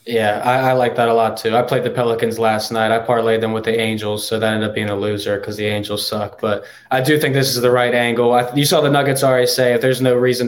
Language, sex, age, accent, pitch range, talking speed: English, male, 20-39, American, 110-130 Hz, 290 wpm